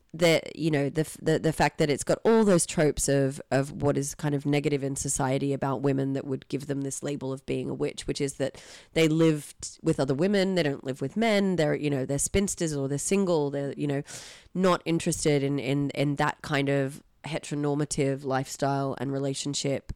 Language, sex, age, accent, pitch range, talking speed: English, female, 30-49, Australian, 140-165 Hz, 210 wpm